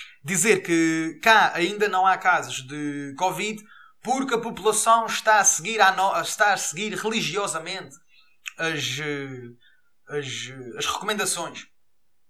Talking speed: 120 wpm